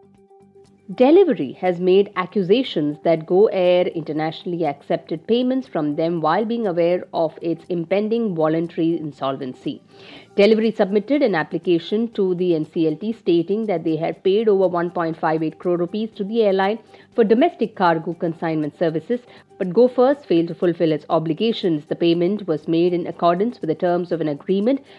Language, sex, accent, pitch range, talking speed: English, female, Indian, 170-220 Hz, 150 wpm